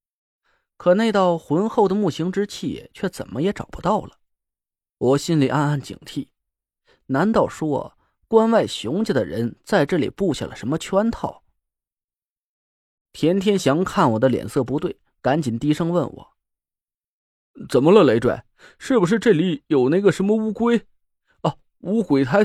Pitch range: 135-210 Hz